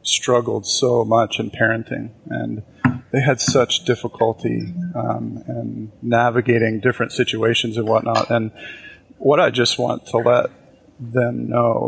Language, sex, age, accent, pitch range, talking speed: English, male, 30-49, American, 115-120 Hz, 130 wpm